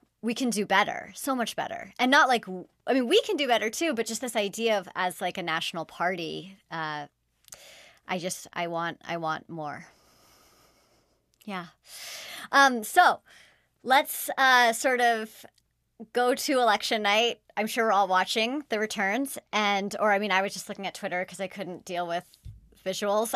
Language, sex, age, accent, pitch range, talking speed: English, male, 30-49, American, 190-260 Hz, 175 wpm